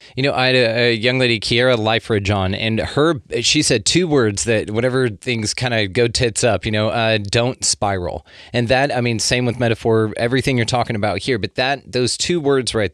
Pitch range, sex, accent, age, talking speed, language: 100-120 Hz, male, American, 30-49, 225 wpm, English